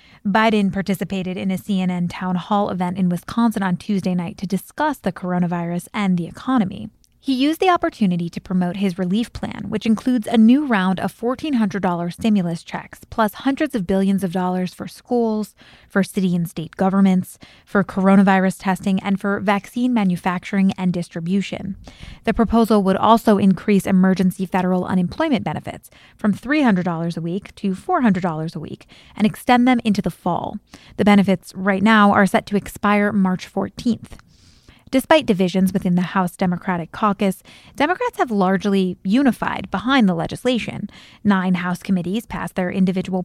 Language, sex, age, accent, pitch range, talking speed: English, female, 20-39, American, 185-215 Hz, 155 wpm